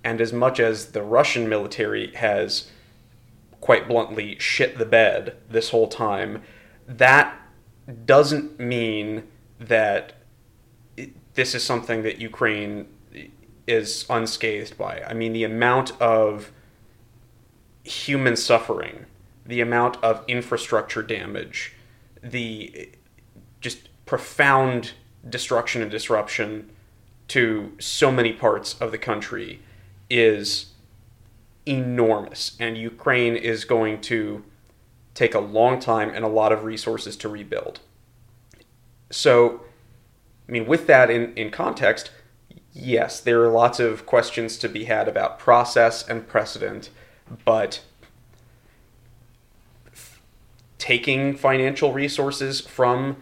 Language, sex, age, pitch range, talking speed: English, male, 30-49, 110-120 Hz, 110 wpm